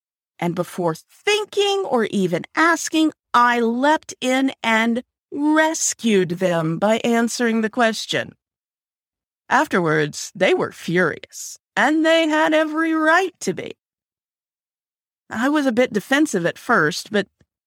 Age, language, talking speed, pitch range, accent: 40-59, English, 120 wpm, 175-260 Hz, American